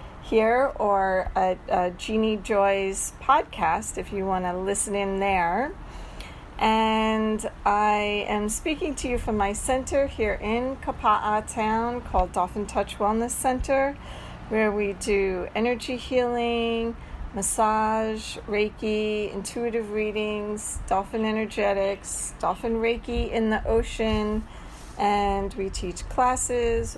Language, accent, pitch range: English, American, 200-235 Hz